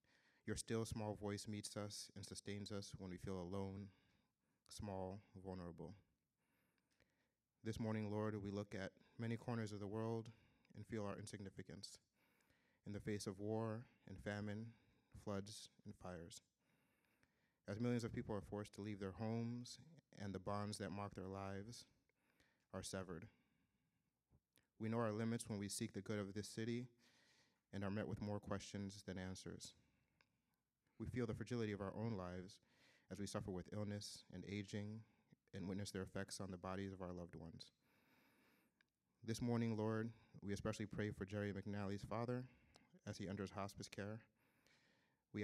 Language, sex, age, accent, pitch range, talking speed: English, male, 30-49, American, 95-110 Hz, 160 wpm